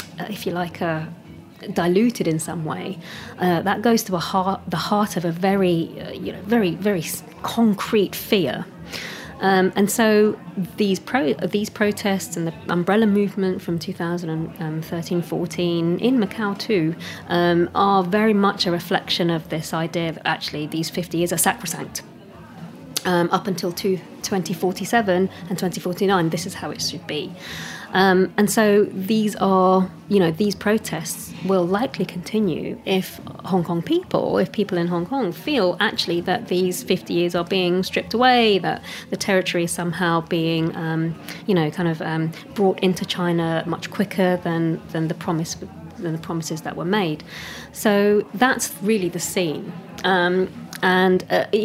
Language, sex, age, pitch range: English, female, 30-49, 170-200 Hz